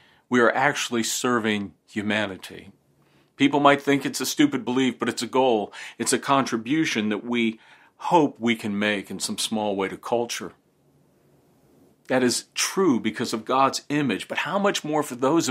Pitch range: 110-140 Hz